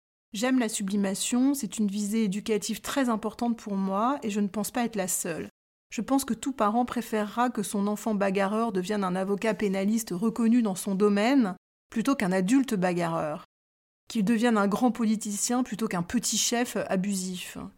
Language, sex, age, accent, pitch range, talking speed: French, female, 30-49, French, 200-235 Hz, 170 wpm